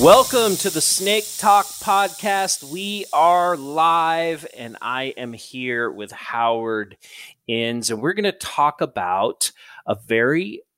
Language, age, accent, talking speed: English, 30-49, American, 135 wpm